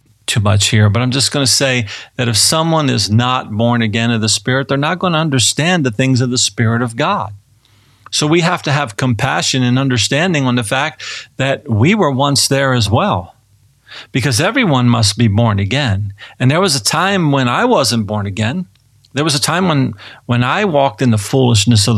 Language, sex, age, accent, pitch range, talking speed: English, male, 50-69, American, 110-140 Hz, 210 wpm